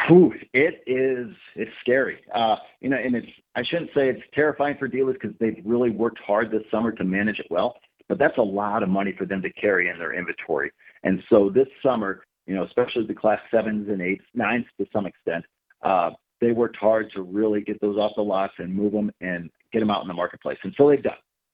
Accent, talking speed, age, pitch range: American, 225 wpm, 50-69, 100-120 Hz